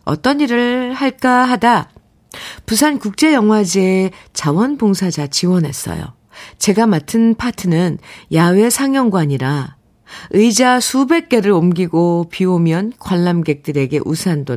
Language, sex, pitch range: Korean, female, 150-215 Hz